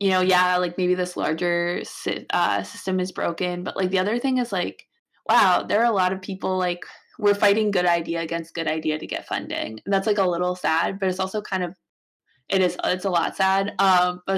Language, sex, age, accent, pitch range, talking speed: English, female, 20-39, American, 170-195 Hz, 225 wpm